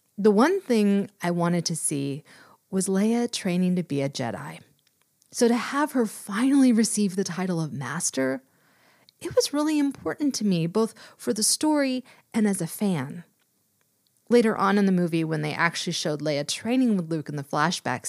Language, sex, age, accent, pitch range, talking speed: English, female, 30-49, American, 160-235 Hz, 180 wpm